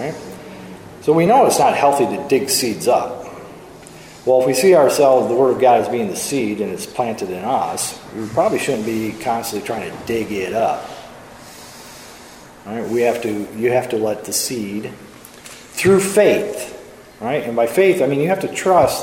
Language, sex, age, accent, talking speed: English, male, 40-59, American, 195 wpm